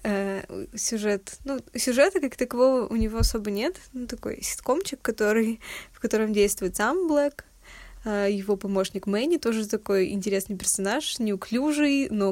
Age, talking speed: 20-39, 140 wpm